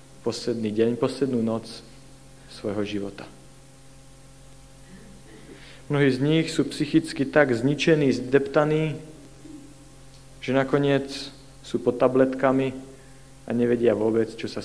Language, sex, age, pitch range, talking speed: Slovak, male, 40-59, 120-135 Hz, 100 wpm